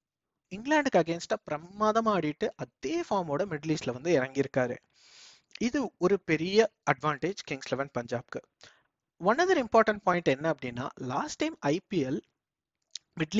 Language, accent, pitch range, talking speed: Tamil, native, 140-215 Hz, 125 wpm